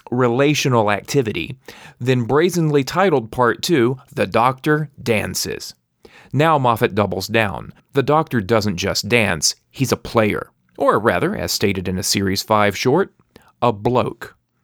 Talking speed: 135 wpm